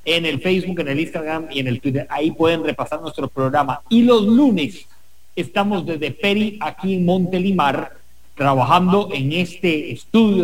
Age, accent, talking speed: 40-59, Mexican, 160 wpm